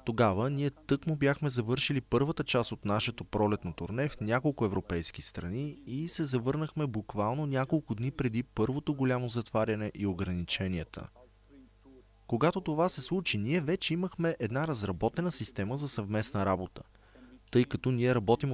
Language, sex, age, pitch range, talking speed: Bulgarian, male, 30-49, 105-150 Hz, 140 wpm